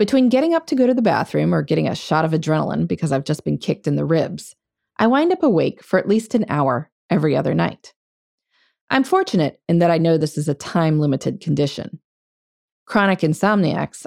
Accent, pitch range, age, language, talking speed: American, 155-240 Hz, 20-39, English, 200 wpm